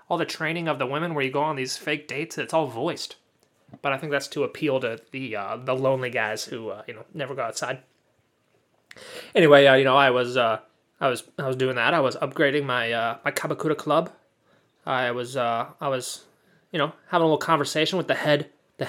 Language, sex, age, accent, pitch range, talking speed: English, male, 20-39, American, 135-175 Hz, 225 wpm